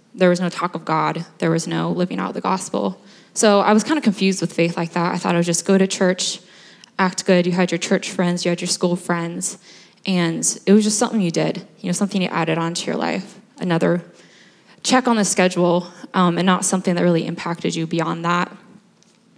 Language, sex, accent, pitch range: English, female, American, 170-205 Hz